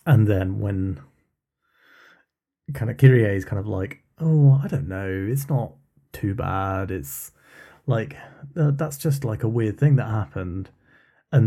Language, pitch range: English, 90-125 Hz